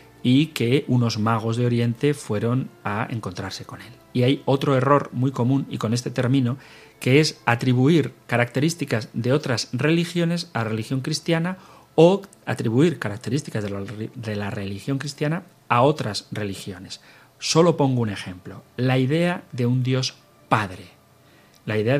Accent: Spanish